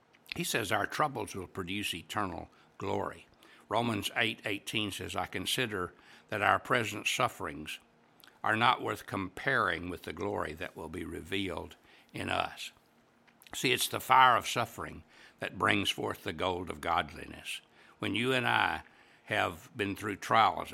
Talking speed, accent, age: 150 wpm, American, 60-79